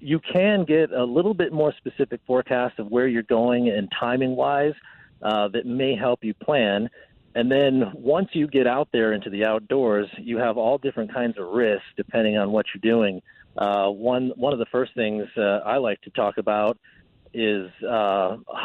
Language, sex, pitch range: English, male, 105-125 Hz